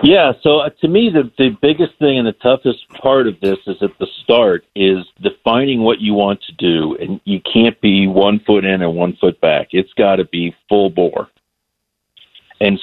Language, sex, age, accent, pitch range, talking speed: English, male, 50-69, American, 90-110 Hz, 200 wpm